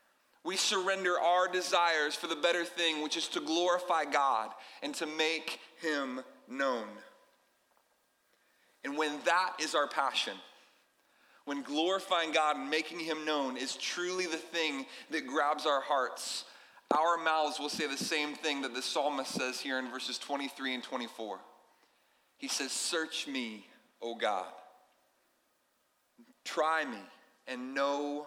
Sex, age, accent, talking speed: male, 30-49, American, 140 wpm